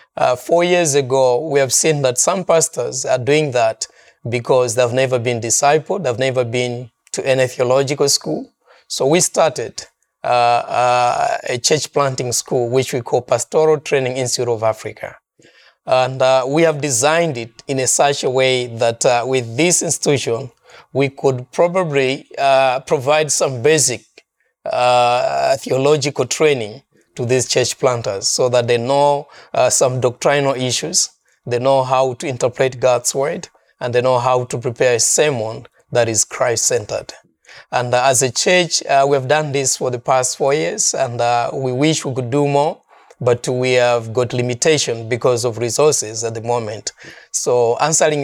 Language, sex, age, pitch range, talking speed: English, male, 30-49, 125-145 Hz, 165 wpm